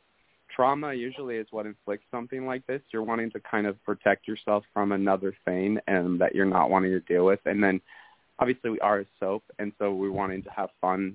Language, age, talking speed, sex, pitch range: English, 20-39, 215 wpm, male, 95-105 Hz